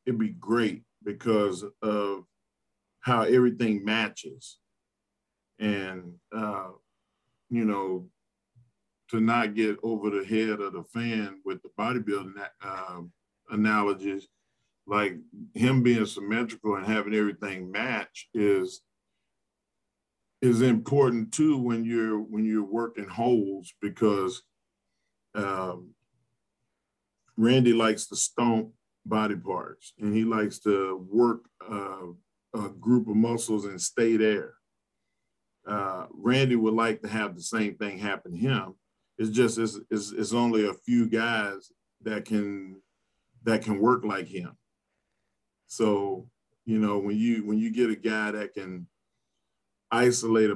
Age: 40-59